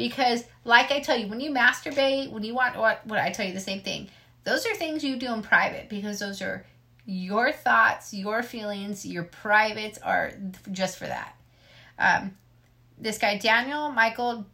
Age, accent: 30-49, American